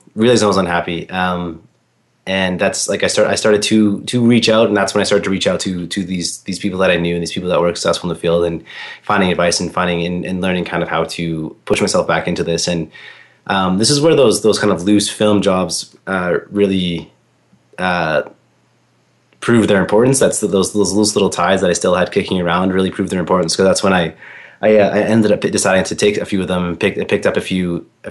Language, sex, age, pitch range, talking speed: English, male, 30-49, 85-105 Hz, 245 wpm